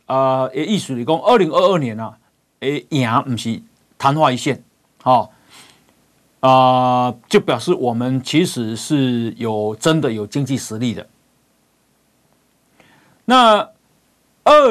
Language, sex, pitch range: Chinese, male, 120-160 Hz